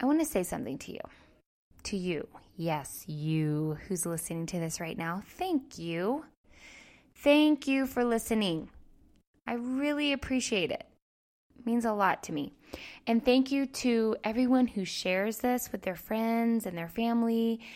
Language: English